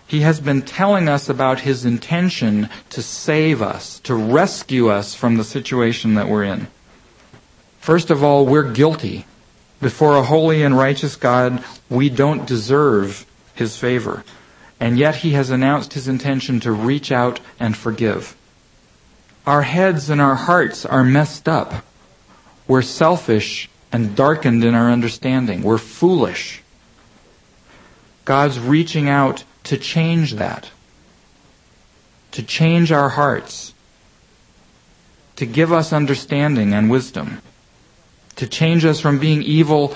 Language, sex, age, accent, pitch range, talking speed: English, male, 50-69, American, 120-150 Hz, 130 wpm